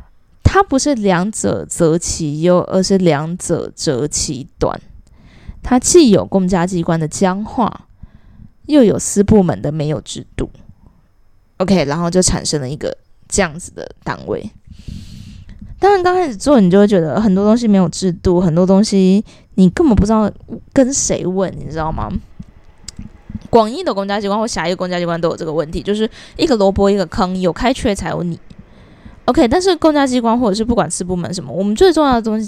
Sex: female